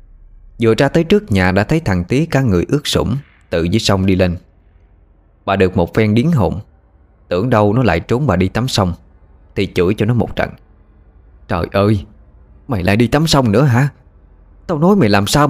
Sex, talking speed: male, 205 wpm